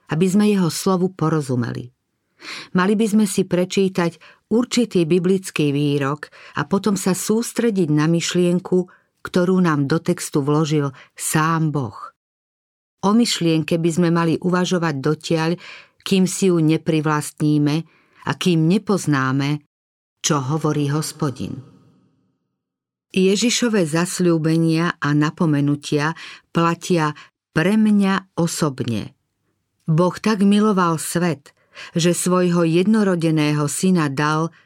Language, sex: Slovak, female